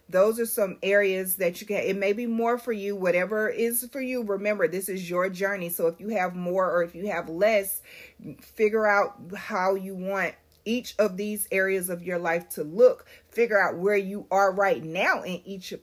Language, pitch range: English, 180-215 Hz